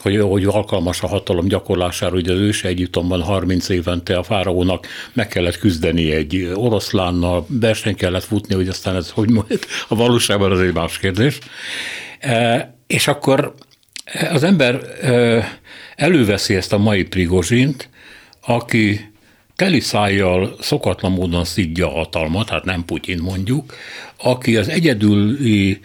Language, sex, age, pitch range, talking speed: Hungarian, male, 60-79, 90-115 Hz, 130 wpm